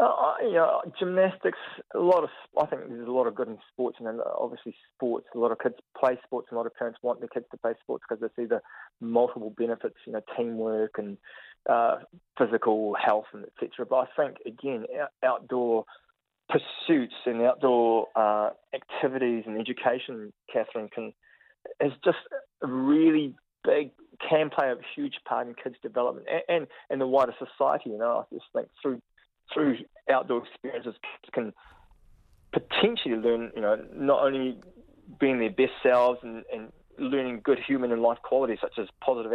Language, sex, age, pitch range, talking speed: English, male, 20-39, 115-155 Hz, 185 wpm